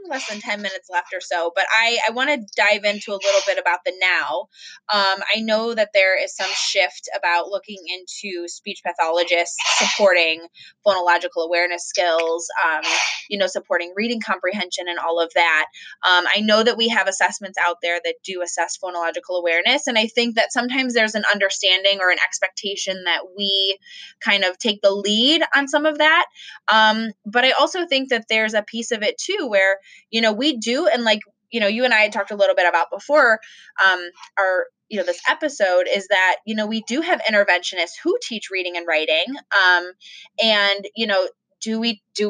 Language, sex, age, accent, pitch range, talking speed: English, female, 20-39, American, 185-255 Hz, 195 wpm